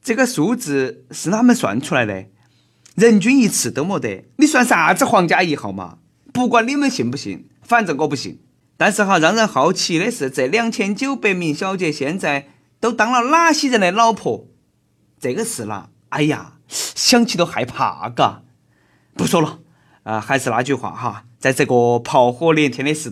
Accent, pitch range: native, 130-215 Hz